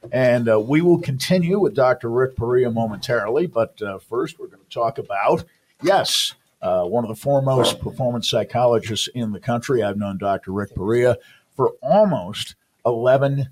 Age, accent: 50-69, American